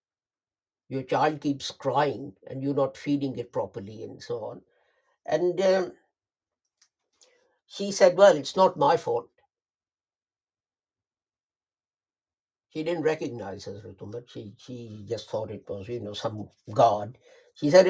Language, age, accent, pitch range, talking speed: English, 60-79, Indian, 135-180 Hz, 125 wpm